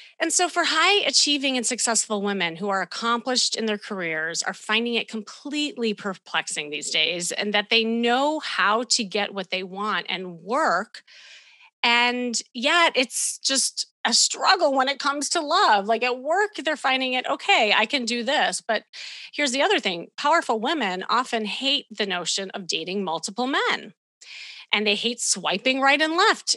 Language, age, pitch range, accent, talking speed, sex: English, 30-49, 200-265 Hz, American, 175 wpm, female